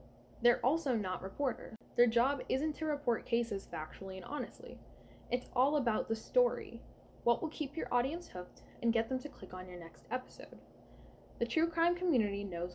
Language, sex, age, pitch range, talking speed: English, female, 10-29, 195-260 Hz, 180 wpm